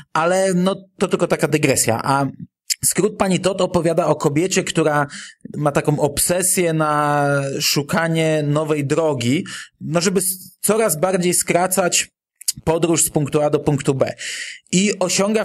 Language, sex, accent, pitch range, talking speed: Polish, male, native, 140-180 Hz, 135 wpm